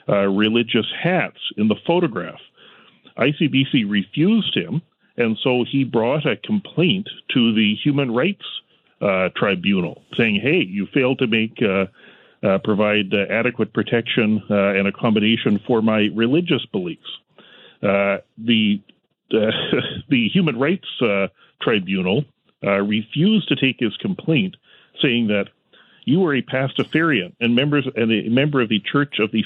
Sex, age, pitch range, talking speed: male, 40-59, 105-145 Hz, 145 wpm